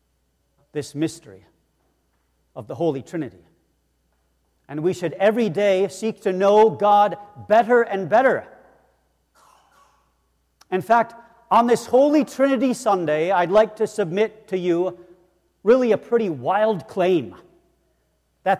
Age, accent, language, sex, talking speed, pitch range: 40-59, American, English, male, 120 wpm, 155-225 Hz